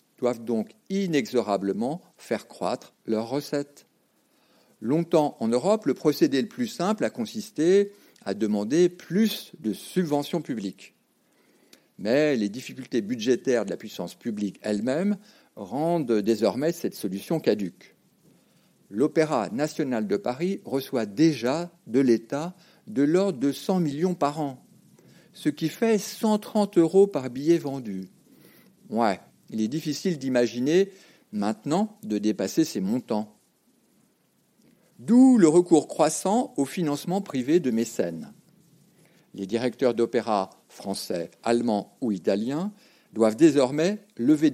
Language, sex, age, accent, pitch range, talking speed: French, male, 50-69, French, 115-190 Hz, 120 wpm